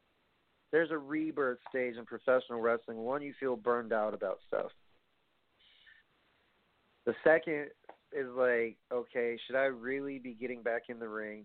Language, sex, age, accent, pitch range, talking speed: English, male, 40-59, American, 110-130 Hz, 145 wpm